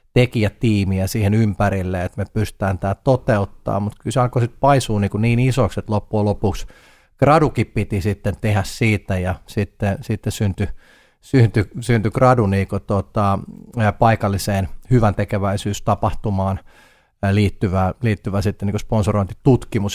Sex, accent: male, native